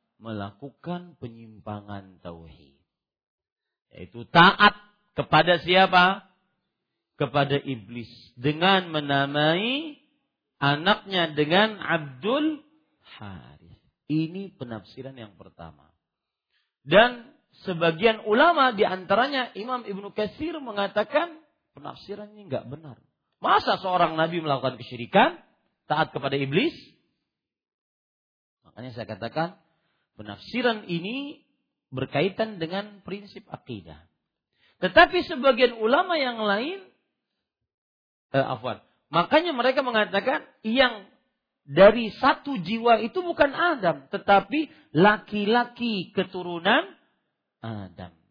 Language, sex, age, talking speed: Malay, male, 40-59, 85 wpm